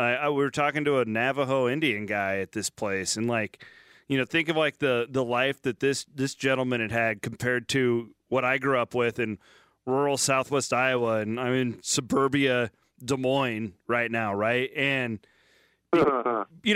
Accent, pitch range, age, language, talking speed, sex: American, 120-150 Hz, 30-49, English, 185 wpm, male